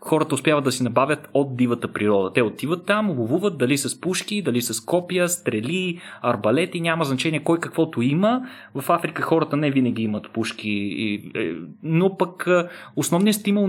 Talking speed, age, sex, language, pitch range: 160 wpm, 30-49, male, Bulgarian, 125-165 Hz